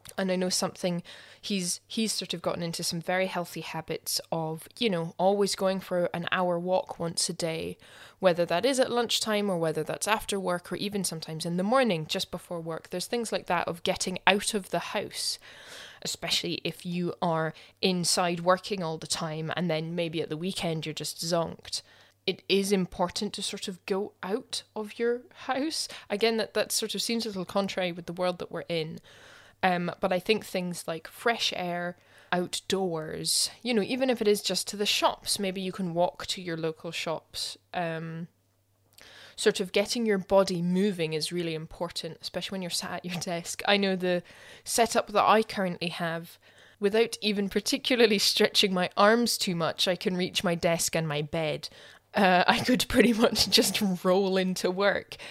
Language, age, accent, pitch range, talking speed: English, 10-29, British, 170-205 Hz, 190 wpm